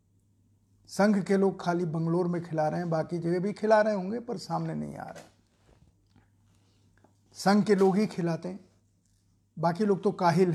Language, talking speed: Hindi, 170 wpm